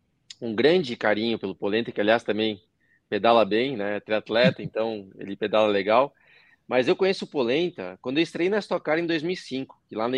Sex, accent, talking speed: male, Brazilian, 190 wpm